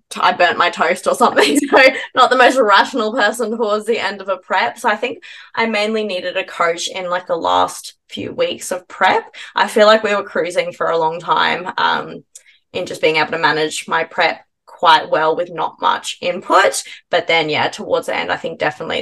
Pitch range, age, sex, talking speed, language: 180-275 Hz, 20-39, female, 215 wpm, English